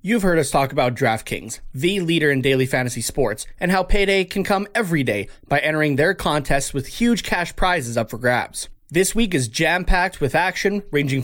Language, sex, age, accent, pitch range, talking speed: English, male, 20-39, American, 130-180 Hz, 205 wpm